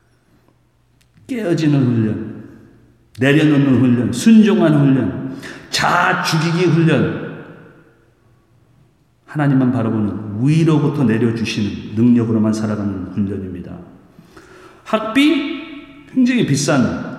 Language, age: Korean, 40-59